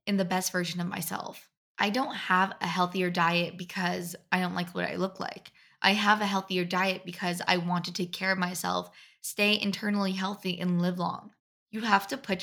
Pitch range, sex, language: 175-205 Hz, female, English